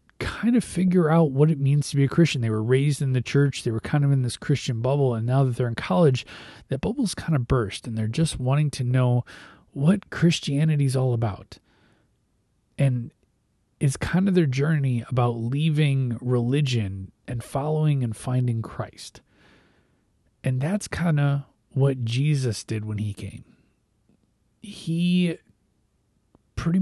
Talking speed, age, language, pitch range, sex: 165 wpm, 30-49, English, 115-150 Hz, male